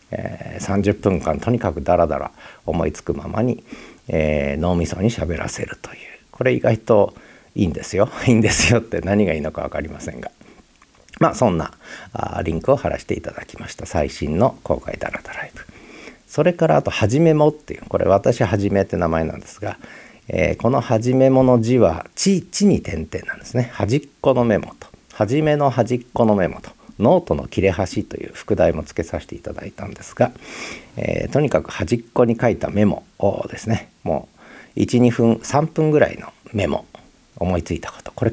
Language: Japanese